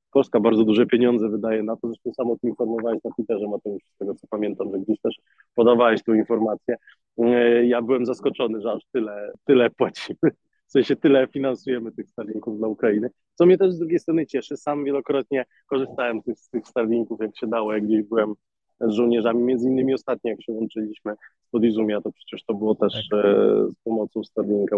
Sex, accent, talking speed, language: male, native, 190 wpm, Polish